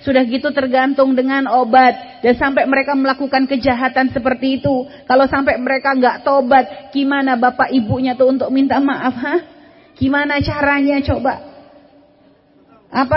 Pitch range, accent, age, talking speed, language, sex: 245-290 Hz, native, 30-49, 130 wpm, Indonesian, female